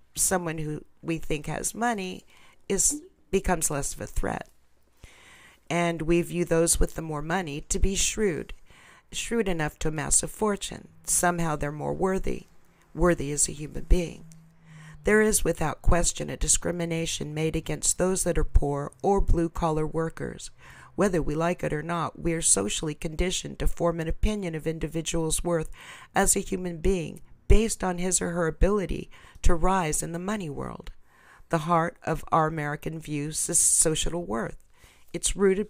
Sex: female